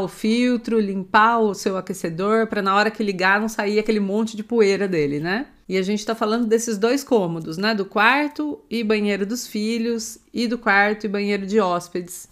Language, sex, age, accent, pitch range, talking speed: Portuguese, female, 30-49, Brazilian, 195-230 Hz, 200 wpm